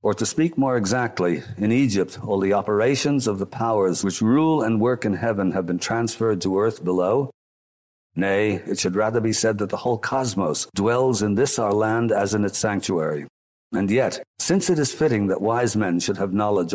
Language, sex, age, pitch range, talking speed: English, male, 50-69, 95-120 Hz, 200 wpm